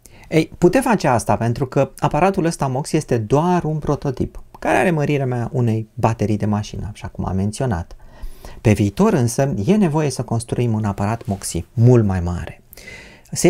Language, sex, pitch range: Romanian, male, 105-160 Hz